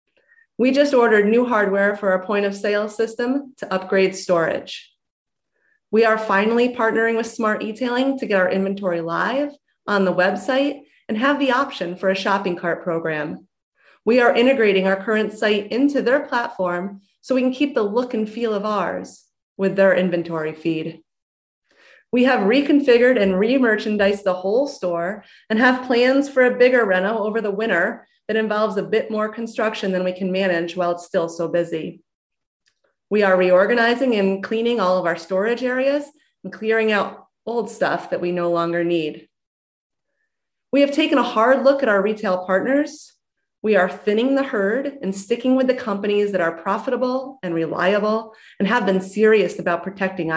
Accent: American